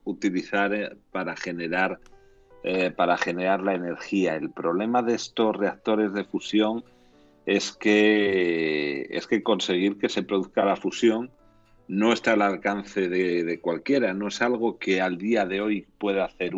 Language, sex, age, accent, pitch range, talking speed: Spanish, male, 50-69, Spanish, 90-110 Hz, 150 wpm